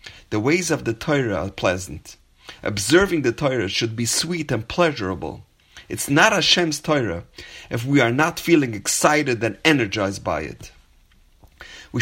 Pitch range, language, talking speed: 105-140 Hz, English, 155 wpm